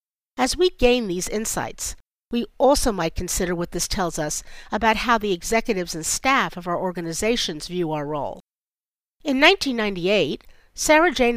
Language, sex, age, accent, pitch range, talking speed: English, female, 50-69, American, 175-250 Hz, 145 wpm